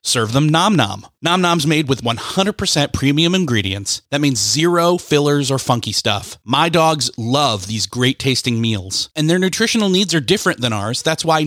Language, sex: English, male